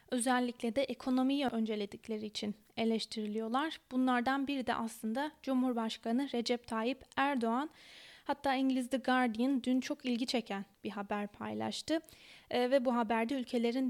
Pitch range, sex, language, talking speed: 220-270 Hz, female, Turkish, 130 wpm